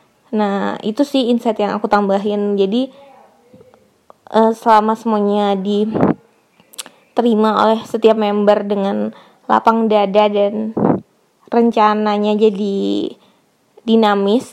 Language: Indonesian